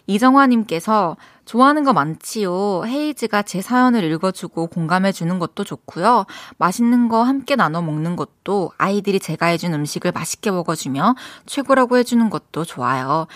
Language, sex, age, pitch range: Korean, female, 20-39, 175-245 Hz